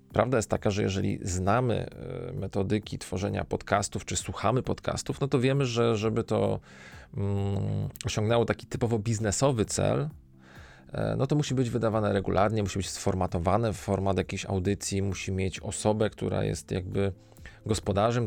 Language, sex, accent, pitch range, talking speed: Polish, male, native, 95-110 Hz, 145 wpm